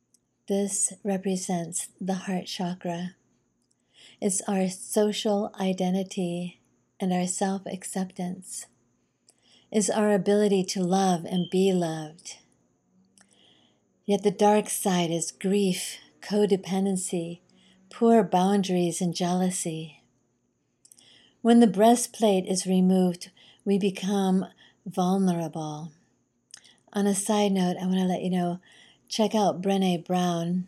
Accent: American